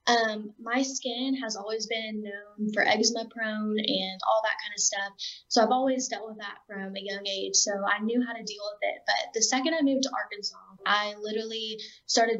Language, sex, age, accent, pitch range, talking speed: English, female, 10-29, American, 195-230 Hz, 210 wpm